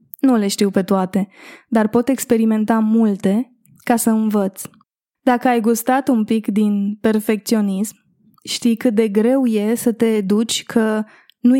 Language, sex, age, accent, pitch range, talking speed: Romanian, female, 20-39, native, 210-245 Hz, 150 wpm